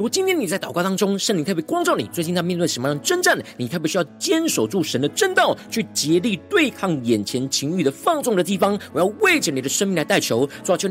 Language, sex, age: Chinese, male, 40-59